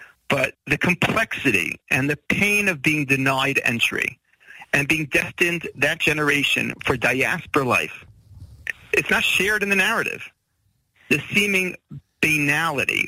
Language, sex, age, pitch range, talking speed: English, male, 40-59, 140-200 Hz, 125 wpm